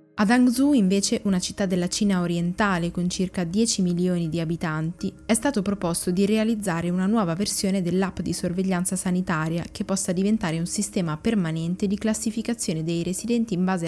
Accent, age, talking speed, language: native, 20-39, 165 wpm, Italian